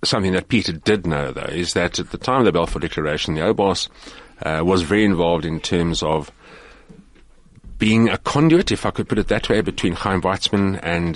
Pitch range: 85-95 Hz